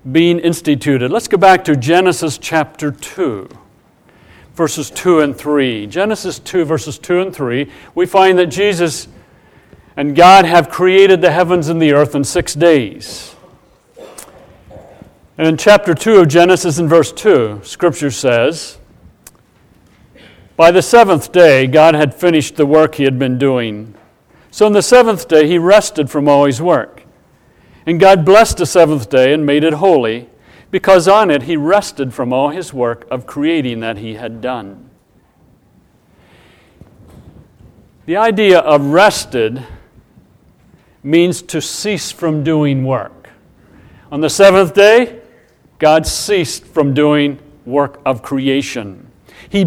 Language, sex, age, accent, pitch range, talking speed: English, male, 50-69, American, 140-185 Hz, 140 wpm